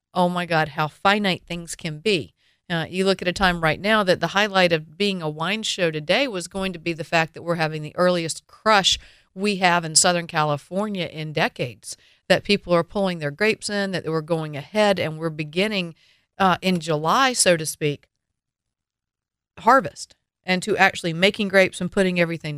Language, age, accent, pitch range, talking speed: English, 40-59, American, 155-185 Hz, 195 wpm